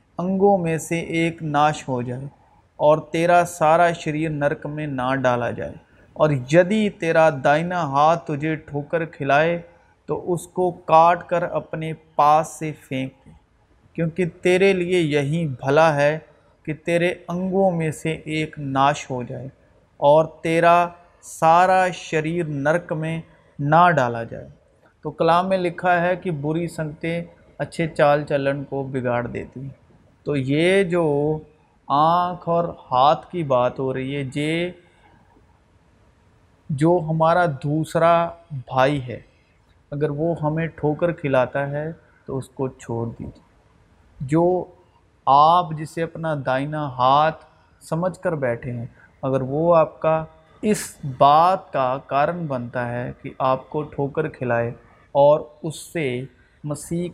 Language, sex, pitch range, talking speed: Urdu, male, 140-170 Hz, 140 wpm